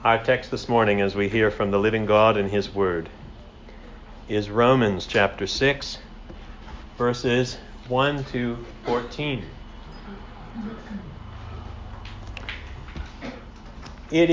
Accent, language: American, English